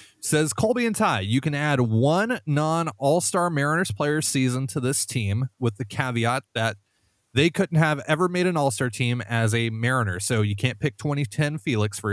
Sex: male